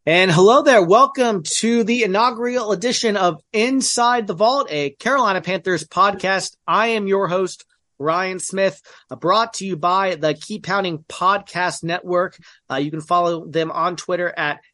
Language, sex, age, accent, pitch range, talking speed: English, male, 30-49, American, 155-200 Hz, 160 wpm